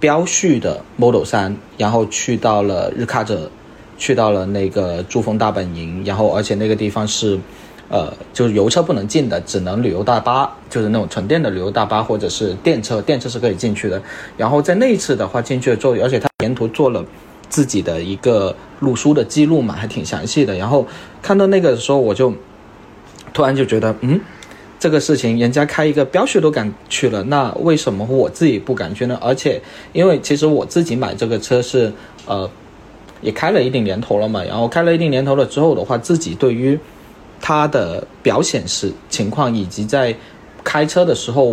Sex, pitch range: male, 105-145 Hz